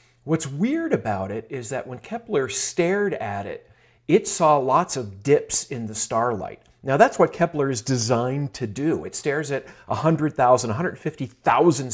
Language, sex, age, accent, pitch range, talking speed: English, male, 40-59, American, 115-175 Hz, 160 wpm